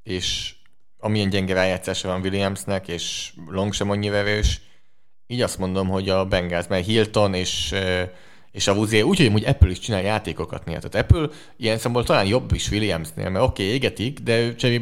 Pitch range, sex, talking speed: 95-110 Hz, male, 175 wpm